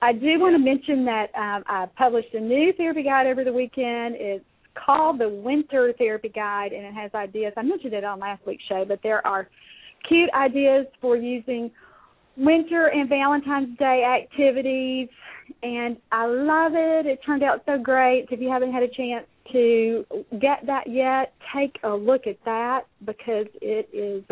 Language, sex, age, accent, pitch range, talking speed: English, female, 40-59, American, 220-275 Hz, 180 wpm